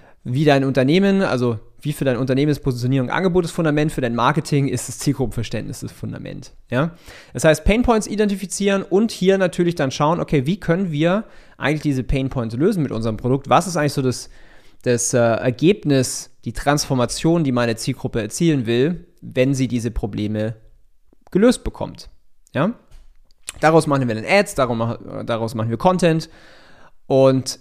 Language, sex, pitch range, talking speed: German, male, 120-160 Hz, 165 wpm